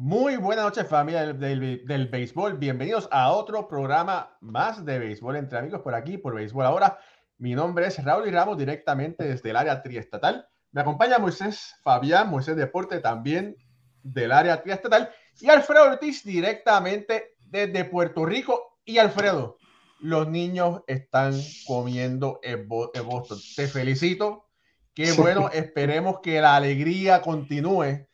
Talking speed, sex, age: 145 wpm, male, 30-49